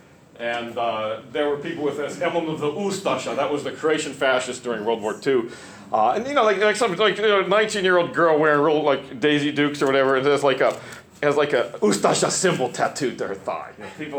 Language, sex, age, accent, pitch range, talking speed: English, male, 40-59, American, 130-205 Hz, 235 wpm